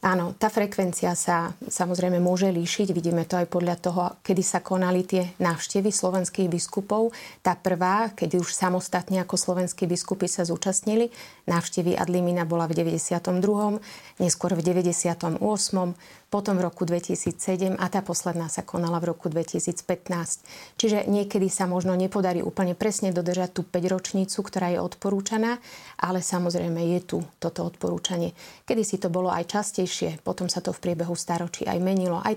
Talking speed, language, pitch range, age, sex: 155 wpm, Slovak, 175-195 Hz, 30-49, female